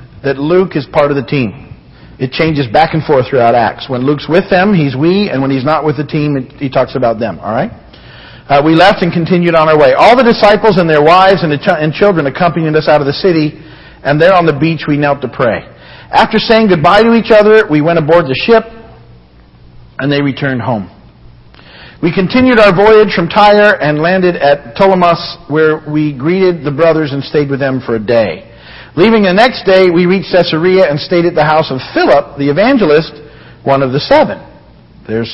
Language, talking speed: English, 210 wpm